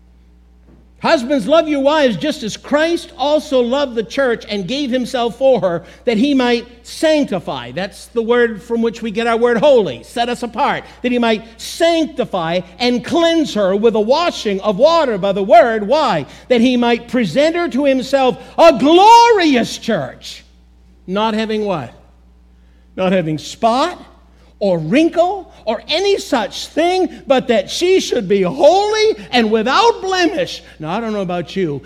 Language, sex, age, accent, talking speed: English, male, 50-69, American, 160 wpm